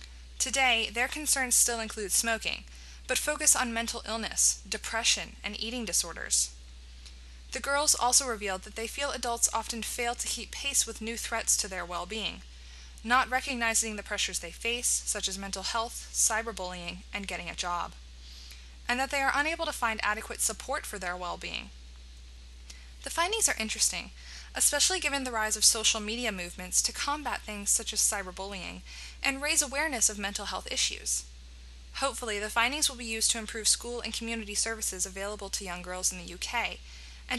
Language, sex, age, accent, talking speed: English, female, 20-39, American, 170 wpm